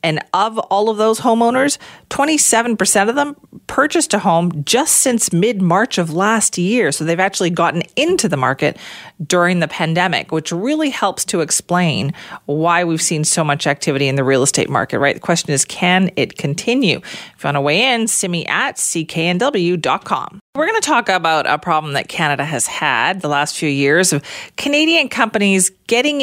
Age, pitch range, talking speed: 40-59, 160-220 Hz, 180 wpm